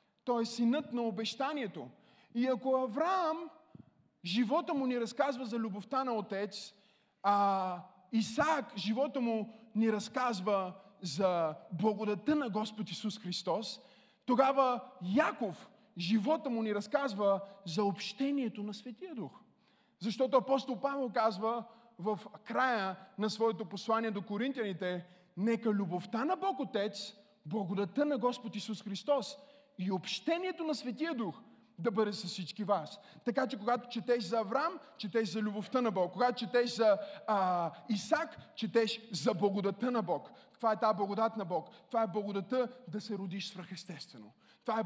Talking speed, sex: 140 wpm, male